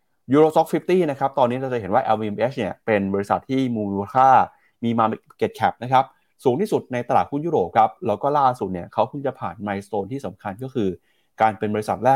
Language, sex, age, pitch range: Thai, male, 20-39, 105-130 Hz